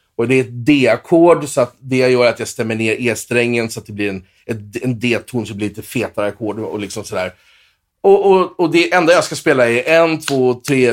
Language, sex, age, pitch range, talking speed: English, male, 30-49, 110-160 Hz, 240 wpm